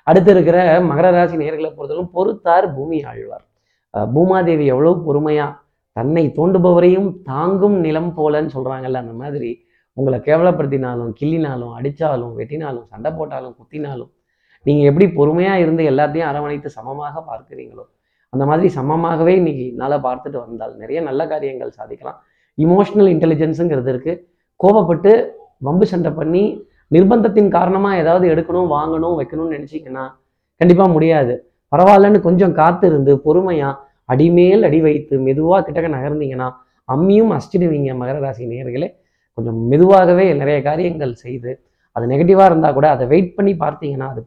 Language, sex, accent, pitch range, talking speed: Tamil, male, native, 135-180 Hz, 120 wpm